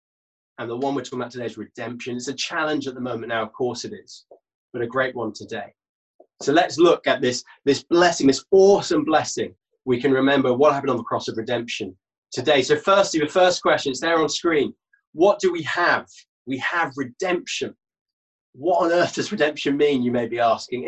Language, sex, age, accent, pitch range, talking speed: English, male, 20-39, British, 130-190 Hz, 205 wpm